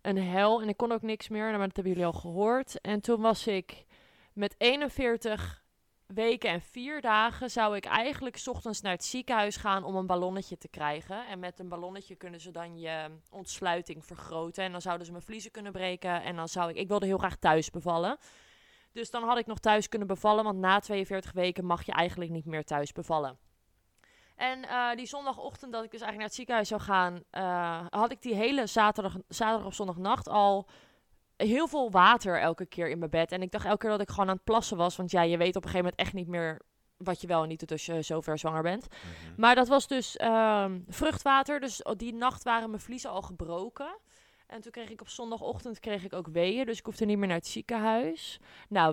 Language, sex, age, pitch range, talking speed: Dutch, female, 20-39, 175-225 Hz, 220 wpm